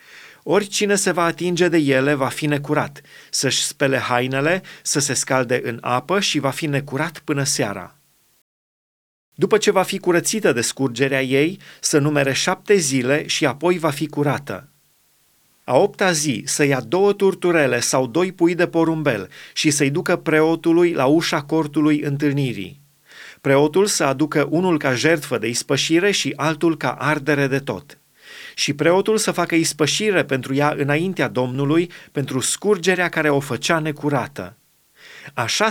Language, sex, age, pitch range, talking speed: Romanian, male, 30-49, 140-170 Hz, 150 wpm